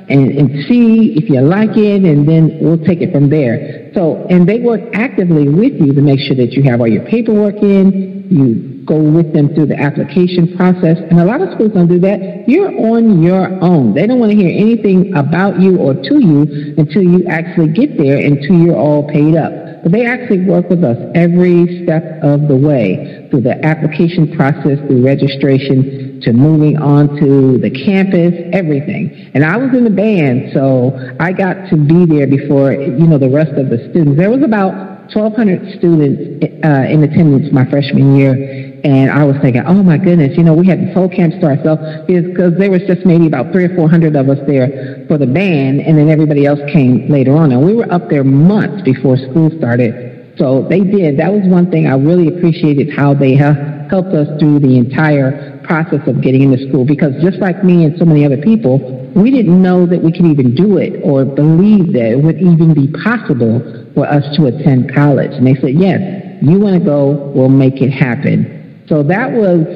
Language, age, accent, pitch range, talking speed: English, 50-69, American, 140-185 Hz, 210 wpm